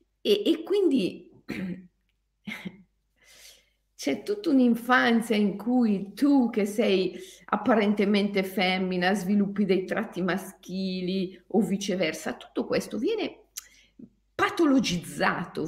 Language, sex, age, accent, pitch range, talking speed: Italian, female, 50-69, native, 165-230 Hz, 90 wpm